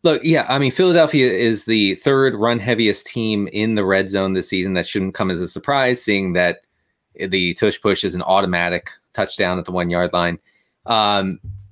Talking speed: 195 wpm